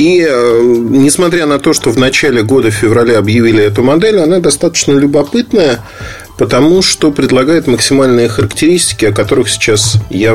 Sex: male